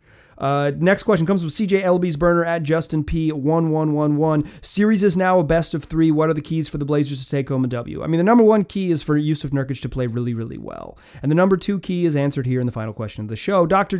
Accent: American